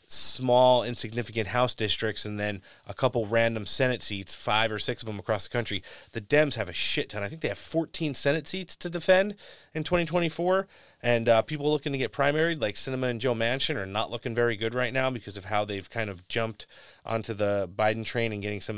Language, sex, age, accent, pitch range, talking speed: English, male, 30-49, American, 105-130 Hz, 220 wpm